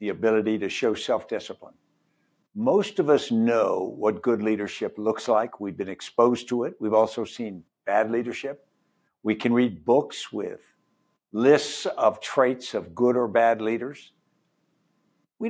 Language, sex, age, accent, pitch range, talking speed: English, male, 60-79, American, 110-150 Hz, 145 wpm